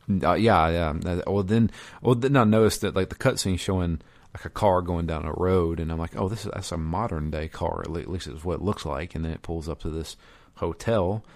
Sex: male